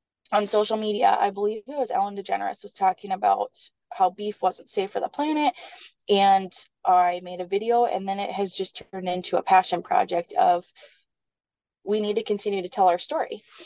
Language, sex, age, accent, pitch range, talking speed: English, female, 20-39, American, 180-225 Hz, 190 wpm